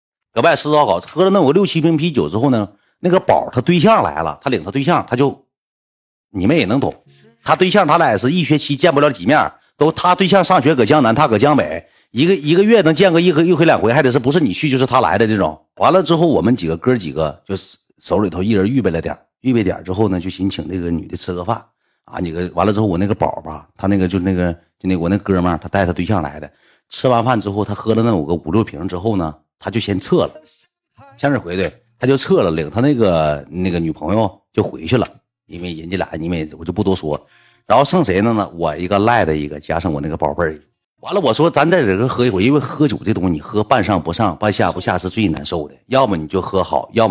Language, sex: Chinese, male